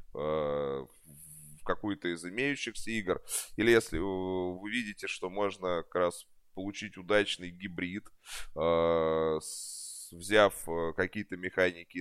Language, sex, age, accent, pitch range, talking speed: Russian, male, 20-39, native, 85-110 Hz, 95 wpm